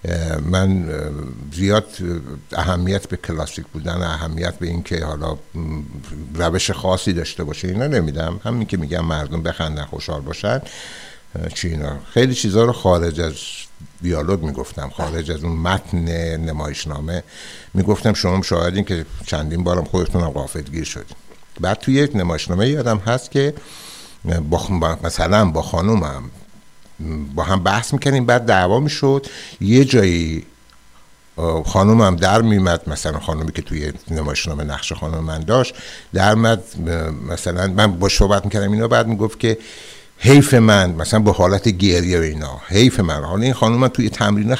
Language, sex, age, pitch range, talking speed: Persian, male, 60-79, 80-105 Hz, 145 wpm